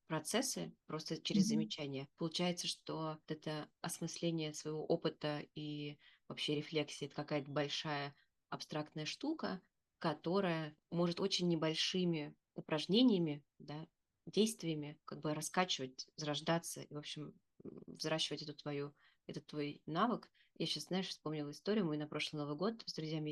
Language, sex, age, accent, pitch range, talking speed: Russian, female, 20-39, native, 150-190 Hz, 130 wpm